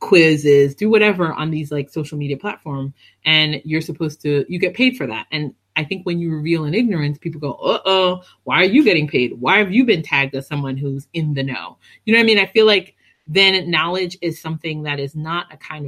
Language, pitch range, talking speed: English, 135-175 Hz, 235 wpm